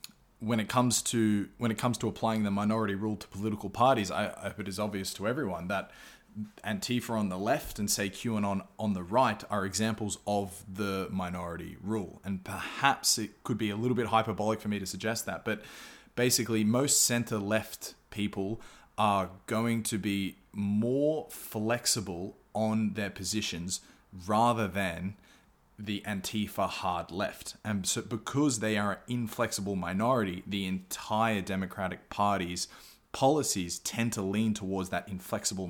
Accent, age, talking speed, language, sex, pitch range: Australian, 20-39, 160 wpm, English, male, 95-110 Hz